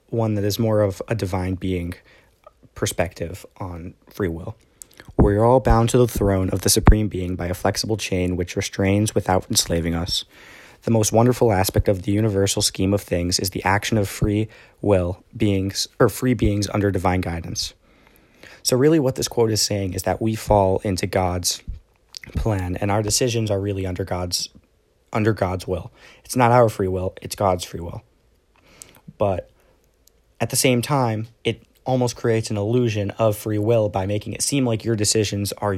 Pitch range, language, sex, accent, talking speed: 95-115 Hz, English, male, American, 180 wpm